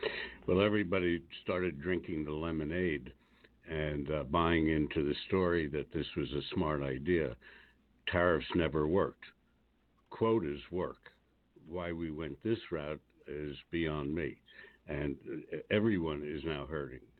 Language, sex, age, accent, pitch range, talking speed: English, male, 60-79, American, 75-95 Hz, 125 wpm